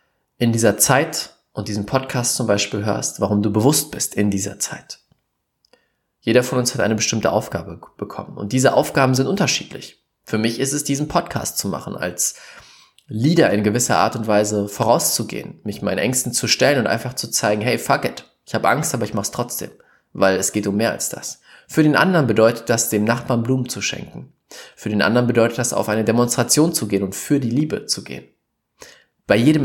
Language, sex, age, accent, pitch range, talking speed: German, male, 20-39, German, 105-140 Hz, 200 wpm